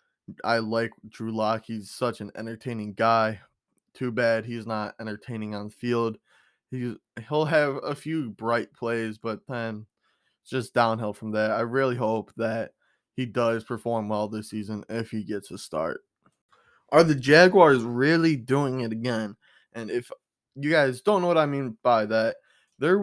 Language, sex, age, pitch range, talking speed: English, male, 20-39, 110-150 Hz, 165 wpm